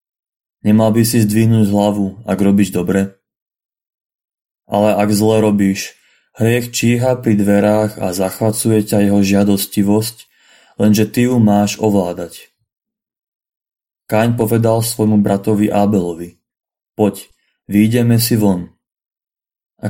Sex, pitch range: male, 100-115 Hz